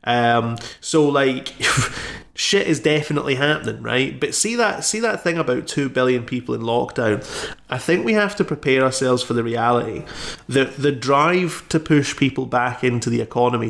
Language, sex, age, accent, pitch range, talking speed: English, male, 30-49, British, 115-140 Hz, 175 wpm